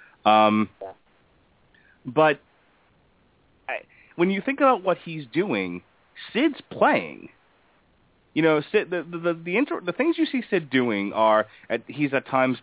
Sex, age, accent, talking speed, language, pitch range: male, 30-49, American, 145 wpm, English, 110-150 Hz